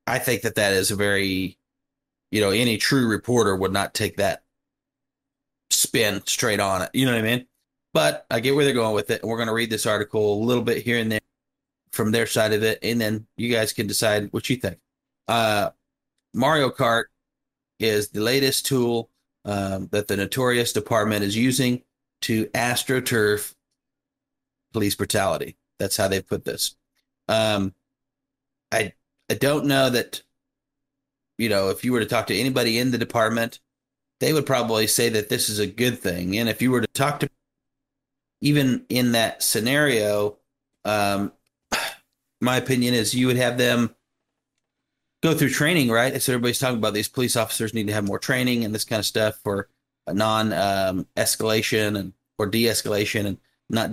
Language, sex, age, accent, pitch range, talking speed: English, male, 30-49, American, 105-130 Hz, 180 wpm